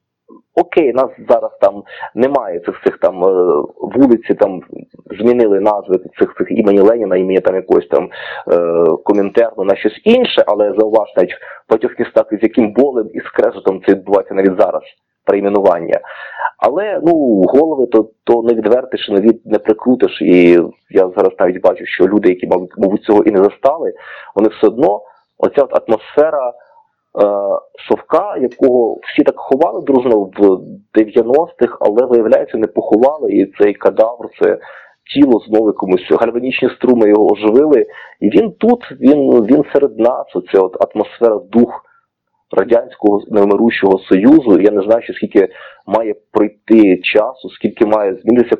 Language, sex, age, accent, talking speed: Ukrainian, male, 30-49, native, 140 wpm